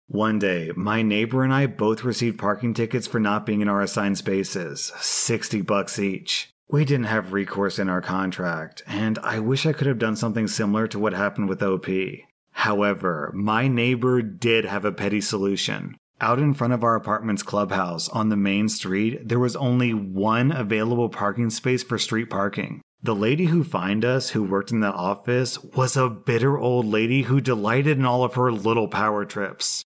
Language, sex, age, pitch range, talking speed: English, male, 30-49, 105-125 Hz, 190 wpm